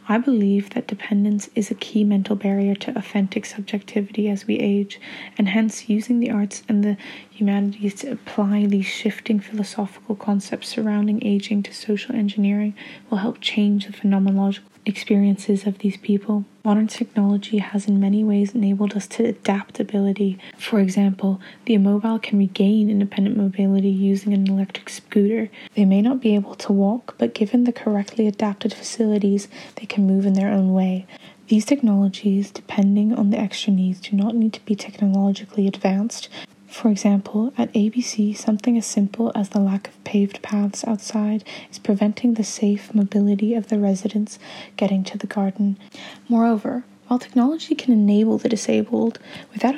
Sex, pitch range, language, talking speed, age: female, 200-225 Hz, English, 160 wpm, 10-29